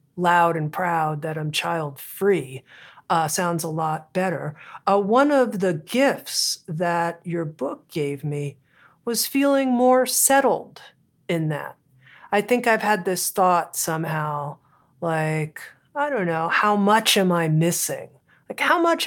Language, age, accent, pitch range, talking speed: English, 50-69, American, 165-245 Hz, 150 wpm